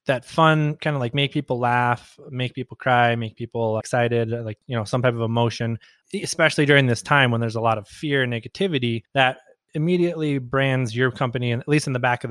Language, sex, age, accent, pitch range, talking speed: English, male, 20-39, American, 115-135 Hz, 215 wpm